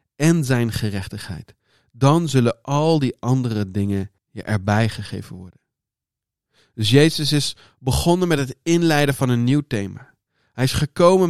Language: Dutch